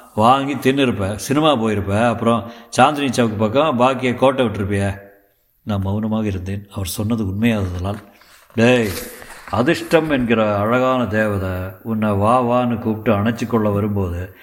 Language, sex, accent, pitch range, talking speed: Tamil, male, native, 105-120 Hz, 120 wpm